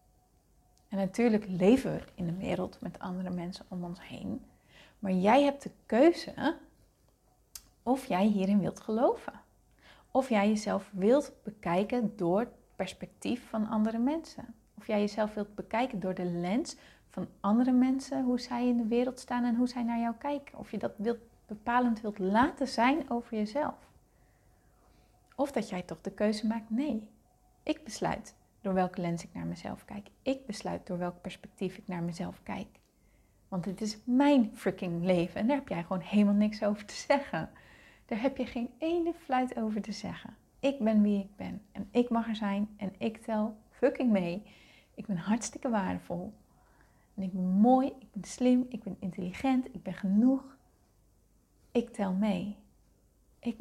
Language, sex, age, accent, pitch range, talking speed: Dutch, female, 30-49, Dutch, 190-245 Hz, 170 wpm